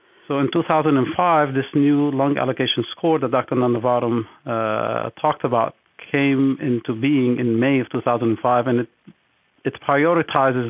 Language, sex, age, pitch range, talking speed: English, male, 50-69, 120-145 Hz, 140 wpm